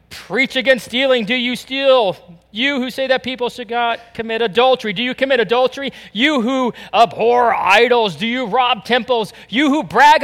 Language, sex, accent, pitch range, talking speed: English, male, American, 190-245 Hz, 175 wpm